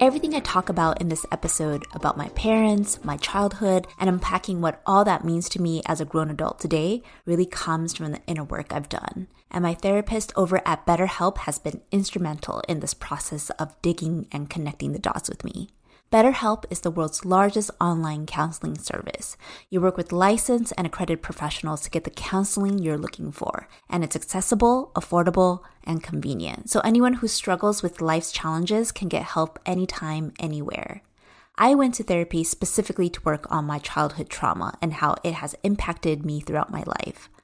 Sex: female